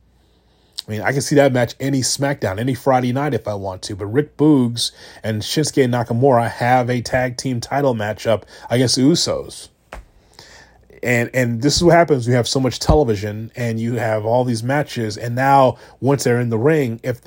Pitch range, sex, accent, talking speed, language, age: 115-140 Hz, male, American, 195 wpm, English, 30-49